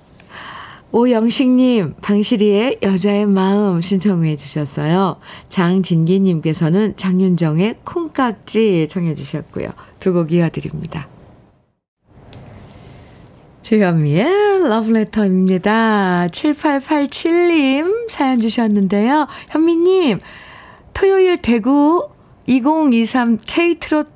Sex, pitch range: female, 175-255 Hz